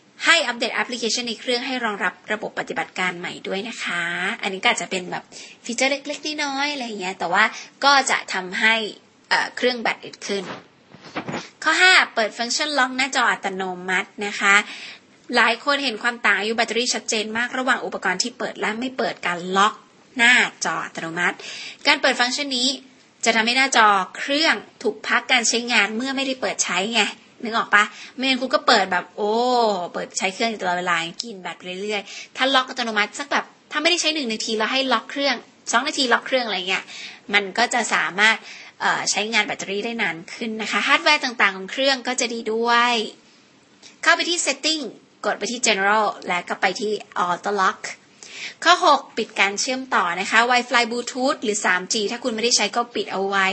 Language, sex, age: Thai, female, 20-39